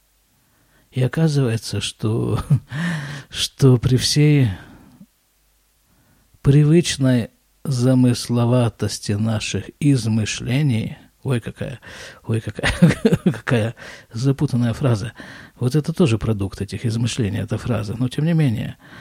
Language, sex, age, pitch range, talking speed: Russian, male, 50-69, 115-160 Hz, 90 wpm